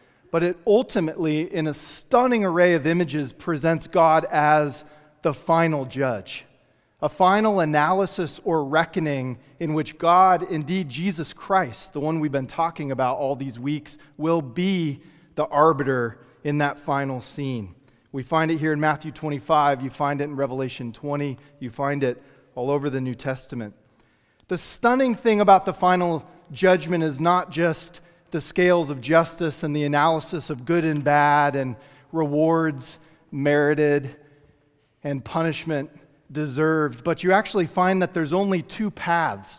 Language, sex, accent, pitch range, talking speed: English, male, American, 135-165 Hz, 150 wpm